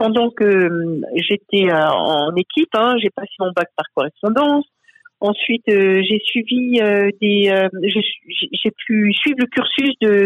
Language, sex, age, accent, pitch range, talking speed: French, female, 50-69, French, 200-265 Hz, 165 wpm